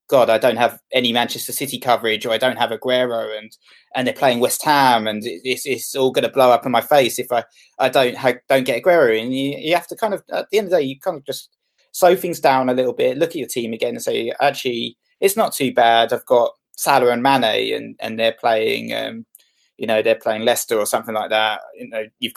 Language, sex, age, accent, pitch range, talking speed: English, male, 20-39, British, 115-140 Hz, 260 wpm